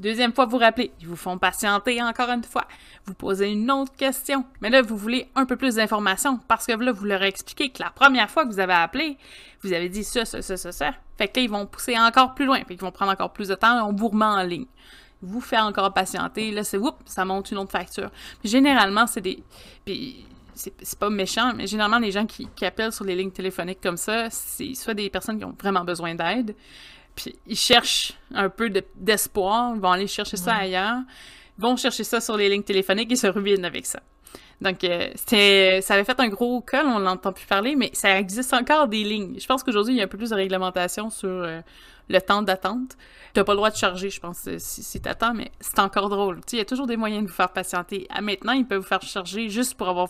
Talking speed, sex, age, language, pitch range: 245 wpm, female, 20-39, French, 195-240 Hz